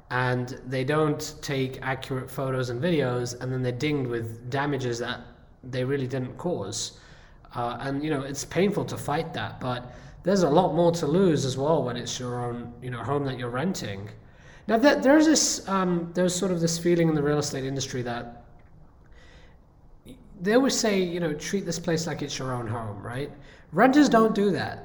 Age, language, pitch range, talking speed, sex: 20-39, English, 125-160 Hz, 195 wpm, male